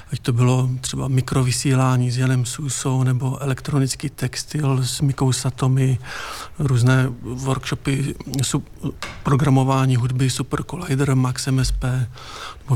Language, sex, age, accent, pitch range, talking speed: Czech, male, 50-69, native, 125-140 Hz, 110 wpm